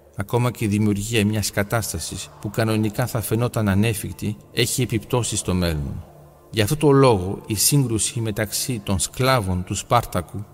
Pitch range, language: 105-125 Hz, Greek